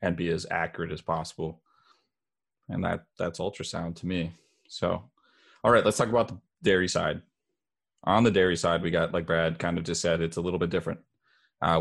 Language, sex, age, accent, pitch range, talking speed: English, male, 20-39, American, 85-95 Hz, 200 wpm